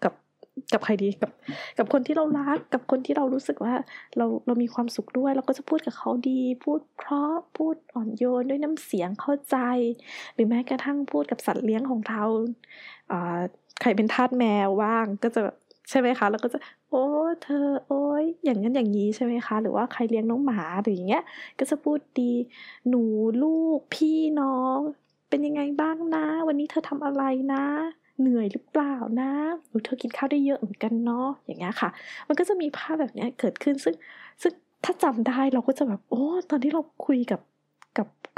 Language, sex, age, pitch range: Thai, female, 20-39, 220-285 Hz